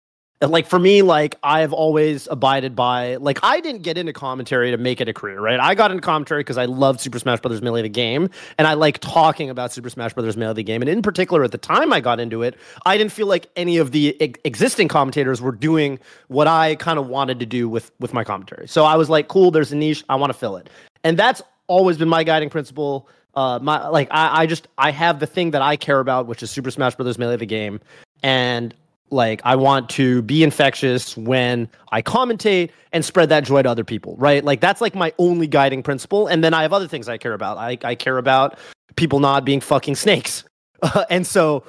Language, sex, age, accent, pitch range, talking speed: English, male, 30-49, American, 130-165 Hz, 240 wpm